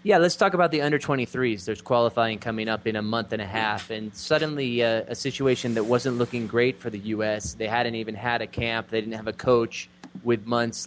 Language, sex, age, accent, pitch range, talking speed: English, male, 20-39, American, 110-125 Hz, 230 wpm